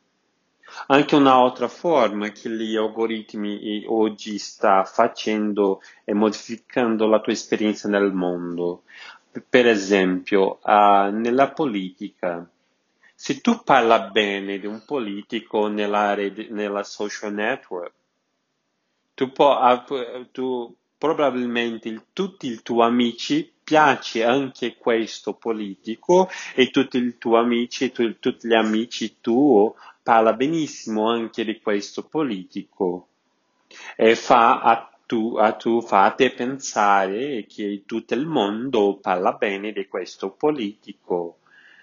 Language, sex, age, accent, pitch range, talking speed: Italian, male, 40-59, native, 105-125 Hz, 110 wpm